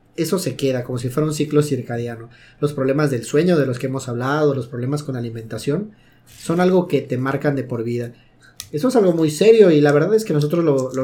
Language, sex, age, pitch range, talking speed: Spanish, male, 30-49, 130-160 Hz, 235 wpm